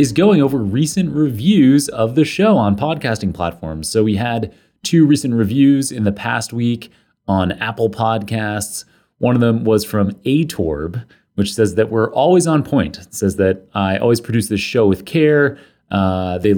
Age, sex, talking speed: 30-49, male, 175 wpm